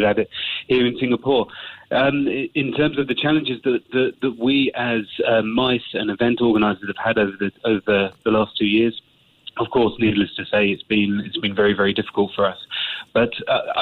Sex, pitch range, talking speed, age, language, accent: male, 105-125 Hz, 200 wpm, 30-49, English, British